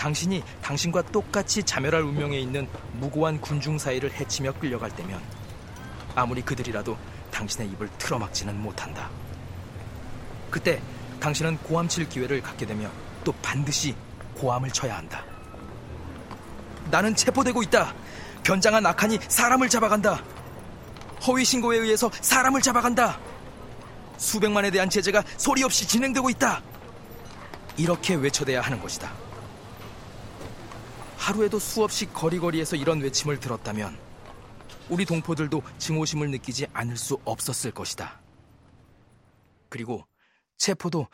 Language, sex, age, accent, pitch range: Korean, male, 40-59, native, 115-170 Hz